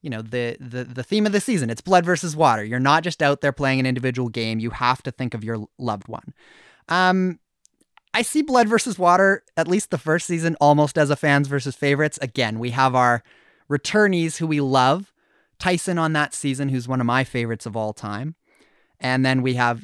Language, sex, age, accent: English, male, 30-49, American